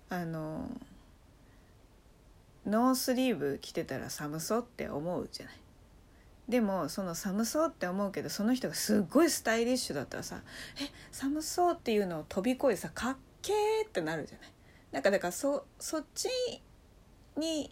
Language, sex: Japanese, female